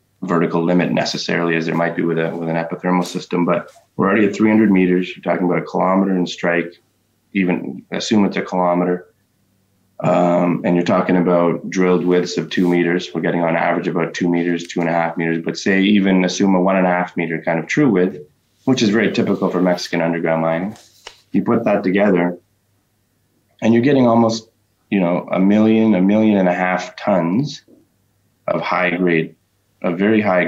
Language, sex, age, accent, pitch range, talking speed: English, male, 20-39, American, 85-100 Hz, 195 wpm